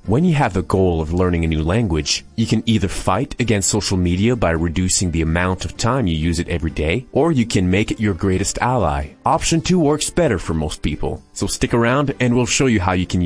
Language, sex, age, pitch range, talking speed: Spanish, male, 30-49, 85-115 Hz, 240 wpm